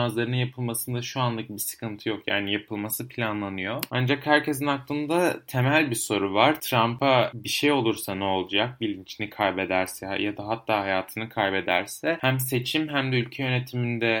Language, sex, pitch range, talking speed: Turkish, male, 105-130 Hz, 150 wpm